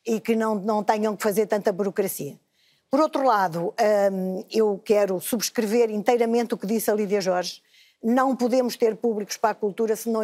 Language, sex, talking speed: Portuguese, female, 190 wpm